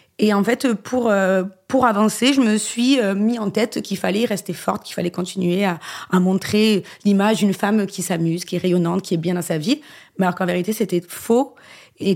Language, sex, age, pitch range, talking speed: French, female, 30-49, 190-230 Hz, 210 wpm